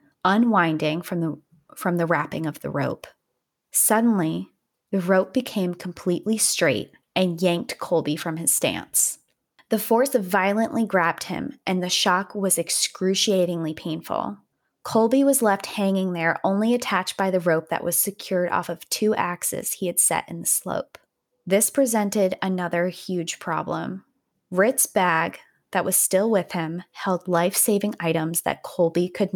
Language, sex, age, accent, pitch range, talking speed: English, female, 20-39, American, 170-210 Hz, 150 wpm